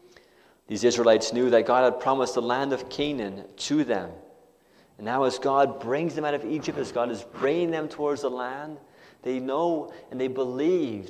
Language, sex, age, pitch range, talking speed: English, male, 30-49, 120-155 Hz, 190 wpm